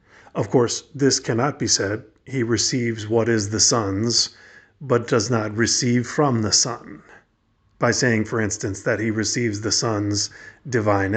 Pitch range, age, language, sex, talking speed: 110-135 Hz, 40-59, English, male, 155 wpm